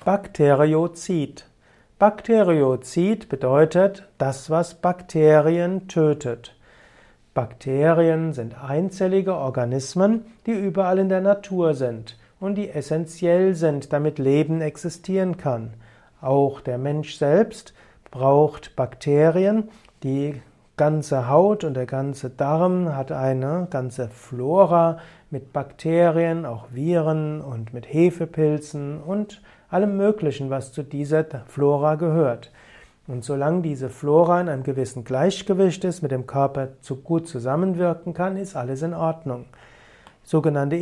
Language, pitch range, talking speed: German, 135-175 Hz, 115 wpm